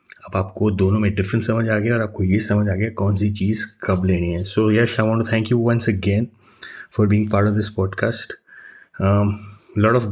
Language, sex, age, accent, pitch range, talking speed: Hindi, male, 30-49, native, 100-115 Hz, 210 wpm